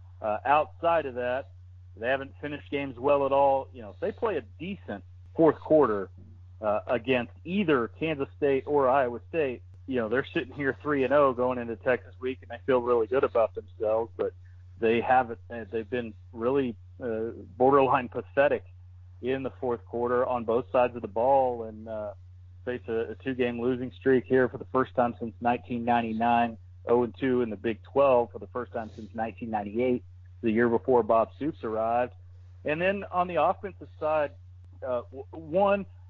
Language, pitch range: English, 100-130 Hz